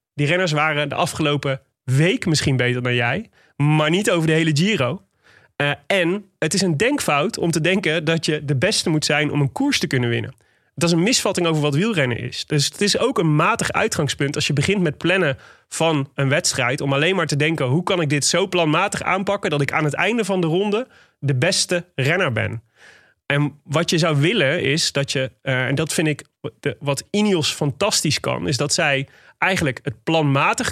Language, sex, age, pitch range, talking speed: Dutch, male, 30-49, 135-175 Hz, 210 wpm